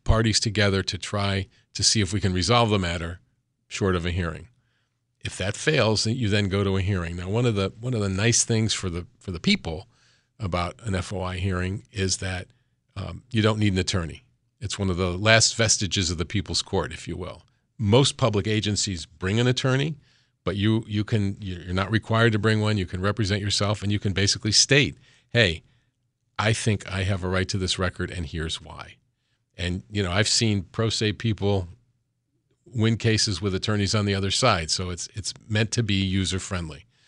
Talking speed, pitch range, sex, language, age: 205 wpm, 95-115 Hz, male, English, 40-59